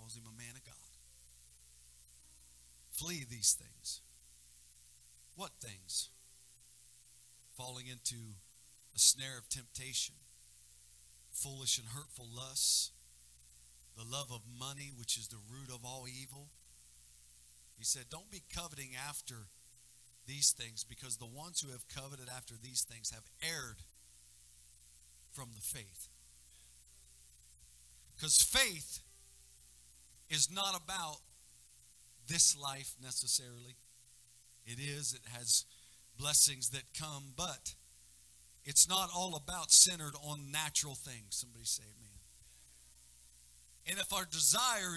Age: 50-69